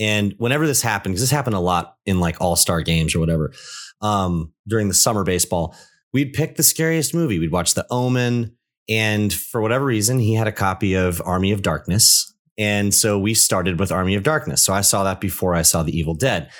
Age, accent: 30-49, American